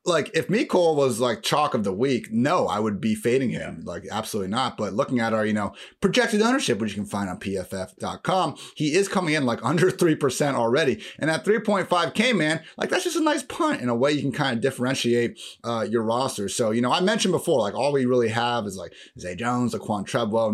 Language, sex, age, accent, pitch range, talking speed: English, male, 30-49, American, 110-175 Hz, 230 wpm